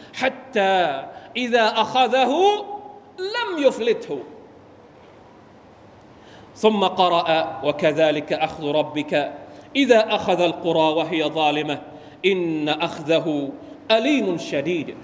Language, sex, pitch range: Thai, male, 160-235 Hz